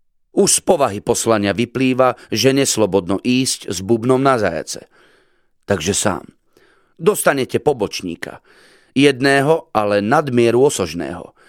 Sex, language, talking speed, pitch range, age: male, Slovak, 105 wpm, 110-140 Hz, 40-59